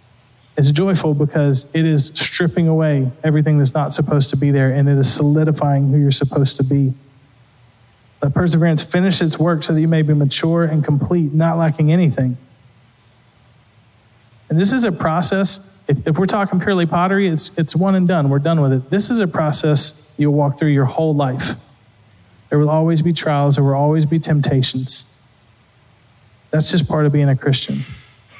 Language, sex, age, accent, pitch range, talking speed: English, male, 40-59, American, 130-165 Hz, 180 wpm